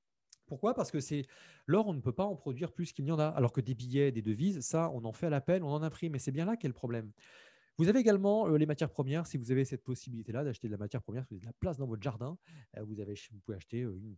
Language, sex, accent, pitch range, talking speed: French, male, French, 110-140 Hz, 295 wpm